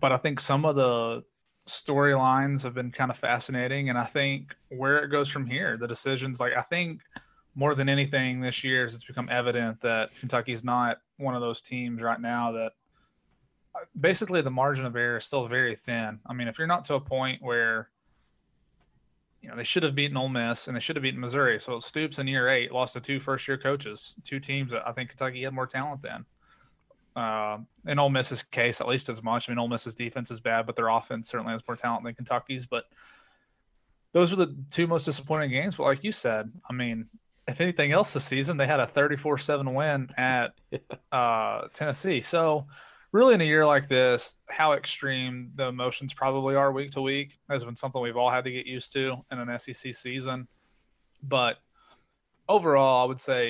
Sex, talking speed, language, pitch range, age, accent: male, 205 wpm, English, 120-140 Hz, 20-39, American